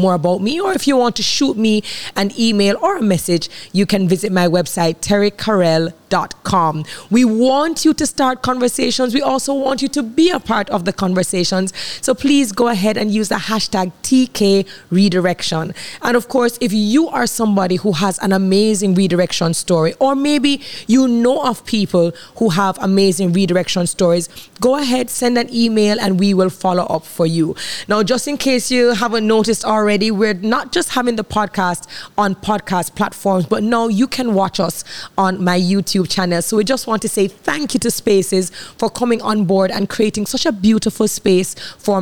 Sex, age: female, 20-39